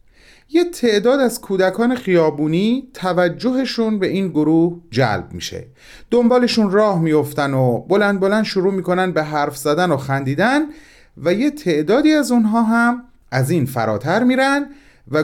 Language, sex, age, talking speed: Persian, male, 40-59, 140 wpm